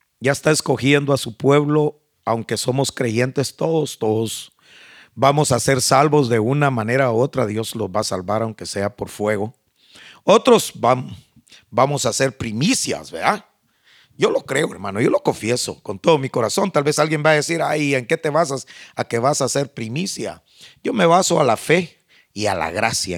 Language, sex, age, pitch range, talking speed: Spanish, male, 50-69, 115-160 Hz, 190 wpm